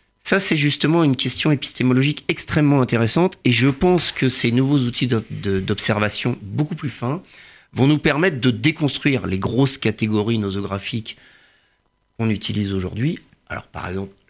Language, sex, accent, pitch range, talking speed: French, male, French, 105-140 Hz, 145 wpm